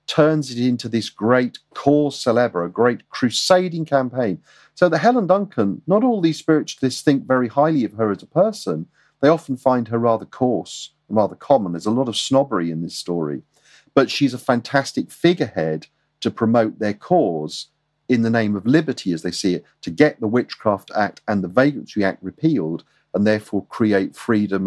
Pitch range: 105-160 Hz